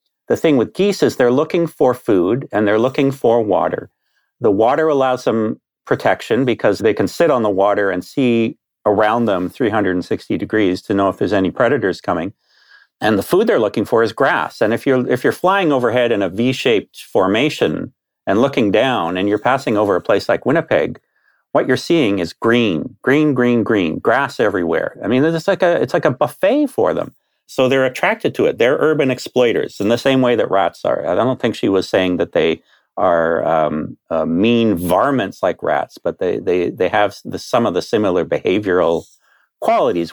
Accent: American